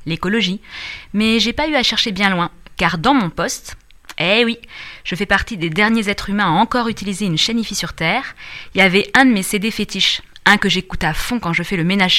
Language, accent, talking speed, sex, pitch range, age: French, French, 235 wpm, female, 175-230 Hz, 20-39